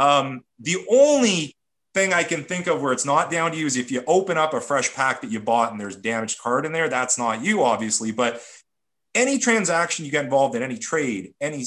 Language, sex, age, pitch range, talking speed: English, male, 30-49, 130-180 Hz, 230 wpm